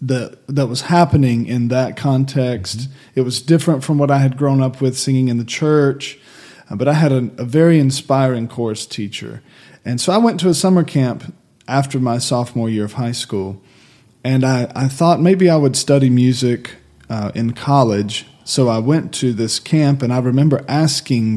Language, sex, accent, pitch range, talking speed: English, male, American, 115-155 Hz, 185 wpm